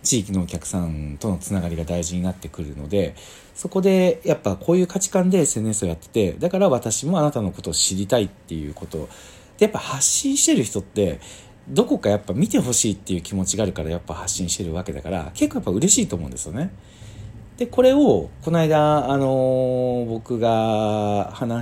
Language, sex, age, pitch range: Japanese, male, 40-59, 95-140 Hz